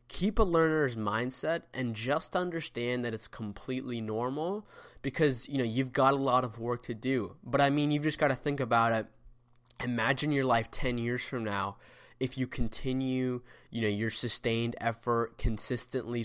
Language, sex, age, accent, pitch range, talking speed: English, male, 20-39, American, 115-130 Hz, 175 wpm